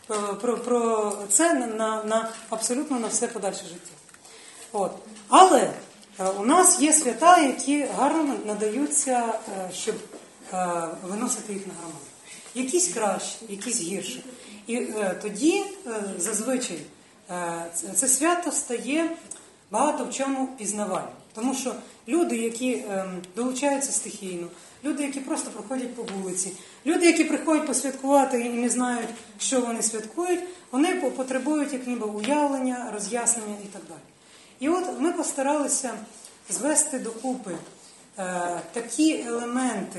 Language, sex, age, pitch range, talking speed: Ukrainian, female, 30-49, 195-265 Hz, 130 wpm